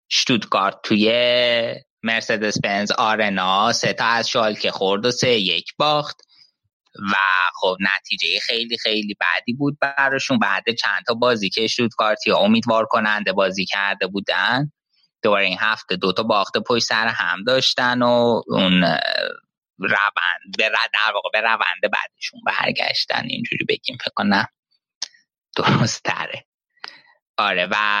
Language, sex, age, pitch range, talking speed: Persian, male, 20-39, 105-130 Hz, 130 wpm